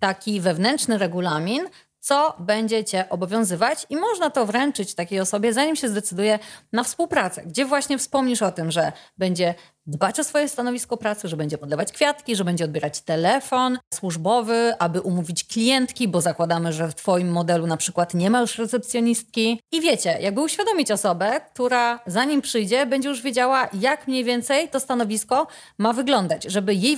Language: Polish